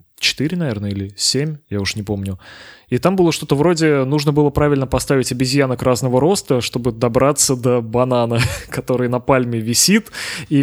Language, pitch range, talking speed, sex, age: Russian, 120-145 Hz, 165 wpm, male, 20-39